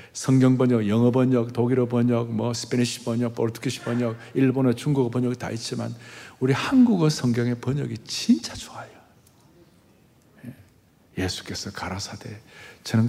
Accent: native